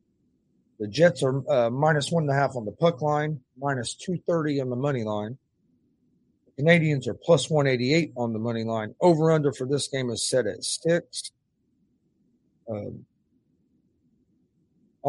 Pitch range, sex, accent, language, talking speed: 120-150 Hz, male, American, English, 135 wpm